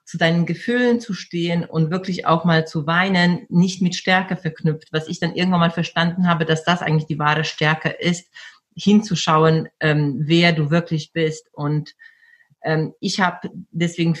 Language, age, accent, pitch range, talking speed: German, 40-59, German, 155-185 Hz, 170 wpm